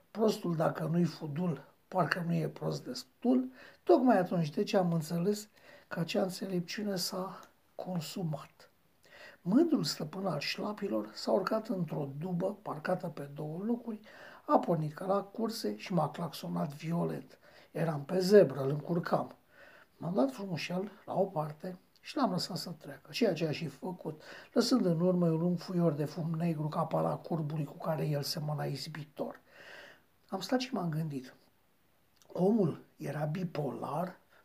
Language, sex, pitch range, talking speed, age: Romanian, male, 165-200 Hz, 150 wpm, 60-79